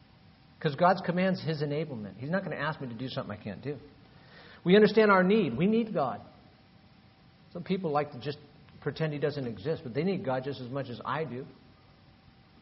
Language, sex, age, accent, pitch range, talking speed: English, male, 50-69, American, 120-160 Hz, 205 wpm